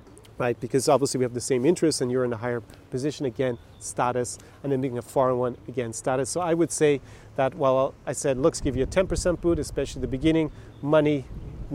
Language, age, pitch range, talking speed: English, 30-49, 125-155 Hz, 220 wpm